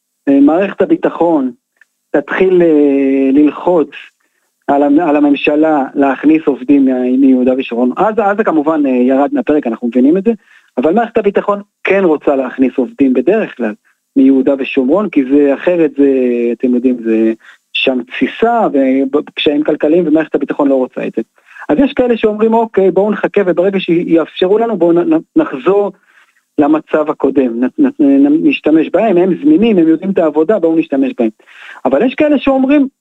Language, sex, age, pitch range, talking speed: Hebrew, male, 40-59, 140-205 Hz, 155 wpm